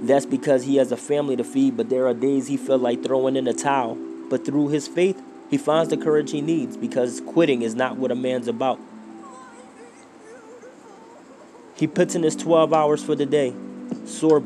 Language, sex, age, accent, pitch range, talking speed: English, male, 20-39, American, 120-145 Hz, 195 wpm